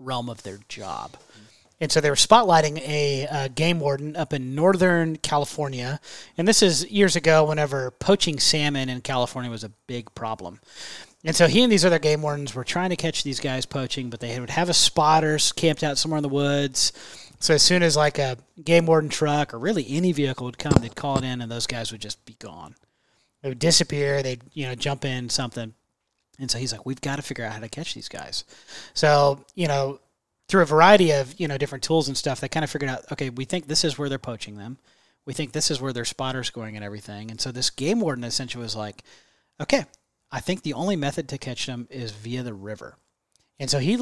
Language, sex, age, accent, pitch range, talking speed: English, male, 30-49, American, 125-155 Hz, 230 wpm